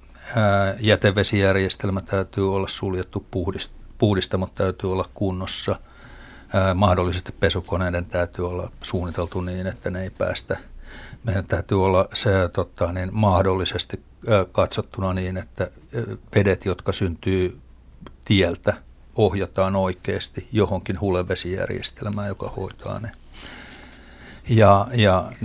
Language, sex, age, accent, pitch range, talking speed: Finnish, male, 60-79, native, 90-105 Hz, 95 wpm